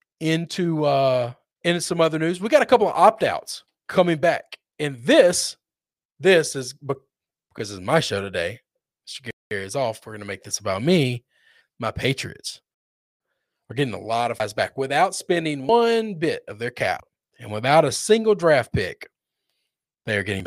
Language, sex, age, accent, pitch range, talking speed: English, male, 40-59, American, 115-160 Hz, 175 wpm